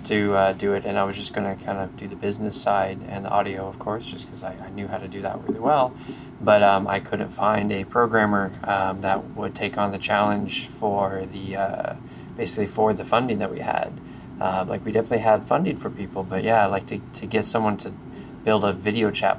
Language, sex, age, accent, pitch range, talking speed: English, male, 20-39, American, 95-110 Hz, 230 wpm